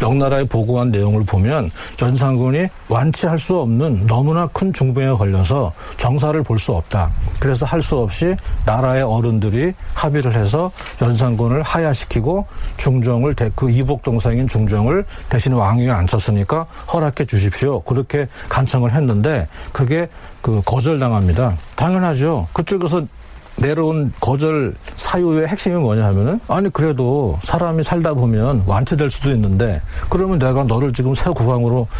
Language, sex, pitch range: Korean, male, 110-155 Hz